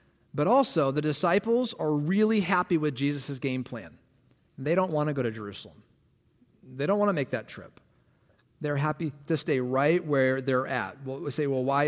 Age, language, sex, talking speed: 40-59, English, male, 185 wpm